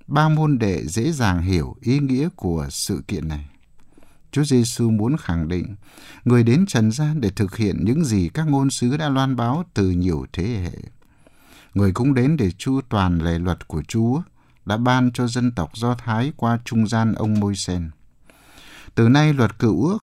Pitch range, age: 95-135 Hz, 60-79